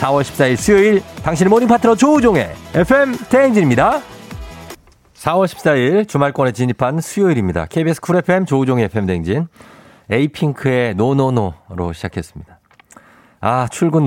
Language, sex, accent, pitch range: Korean, male, native, 95-130 Hz